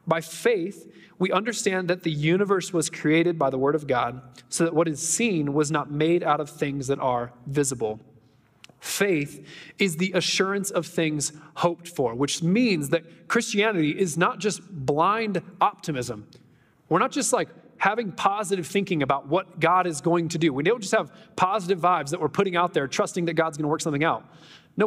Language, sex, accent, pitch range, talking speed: English, male, American, 165-220 Hz, 190 wpm